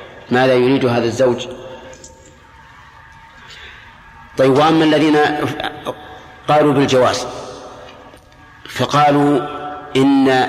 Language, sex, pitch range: Arabic, male, 125-145 Hz